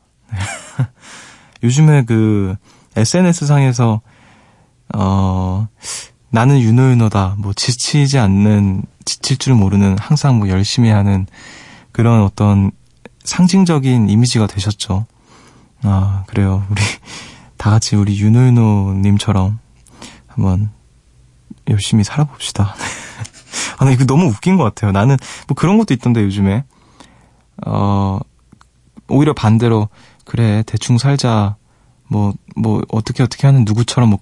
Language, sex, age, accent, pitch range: Korean, male, 20-39, native, 105-135 Hz